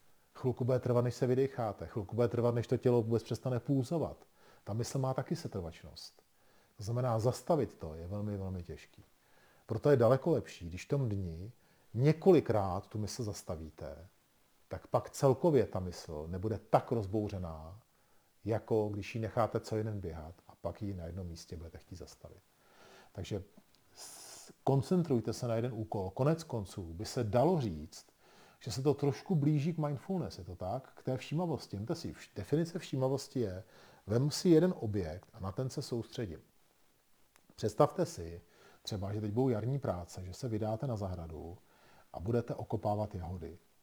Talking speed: 165 wpm